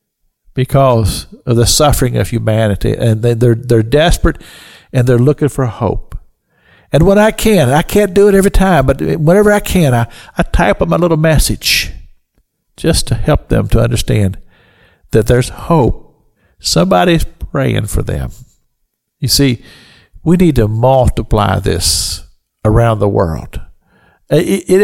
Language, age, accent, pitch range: English, 50-69, American, 115-185 Hz